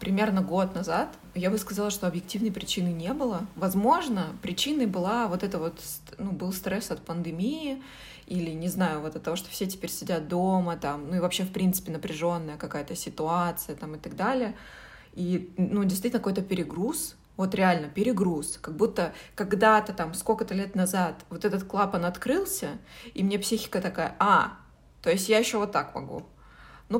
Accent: native